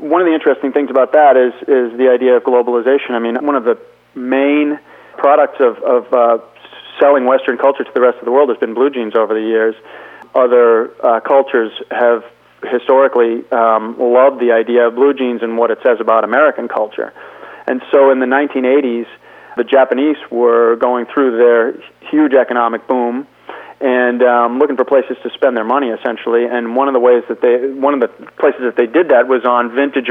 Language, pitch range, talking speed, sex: English, 115-135 Hz, 200 wpm, male